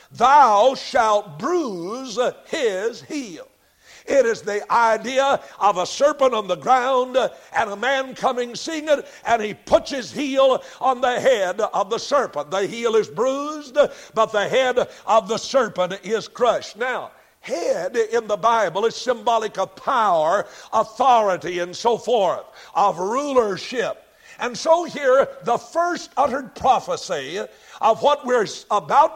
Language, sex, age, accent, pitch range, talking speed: English, male, 60-79, American, 215-280 Hz, 145 wpm